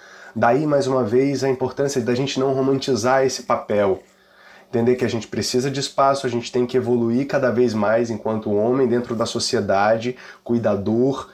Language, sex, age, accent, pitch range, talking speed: Portuguese, male, 20-39, Brazilian, 110-135 Hz, 175 wpm